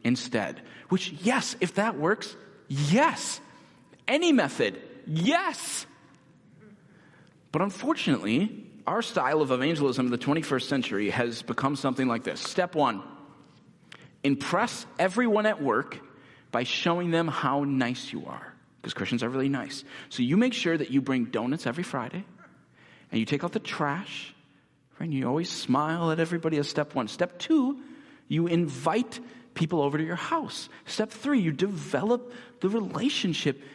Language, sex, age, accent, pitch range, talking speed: English, male, 40-59, American, 140-220 Hz, 150 wpm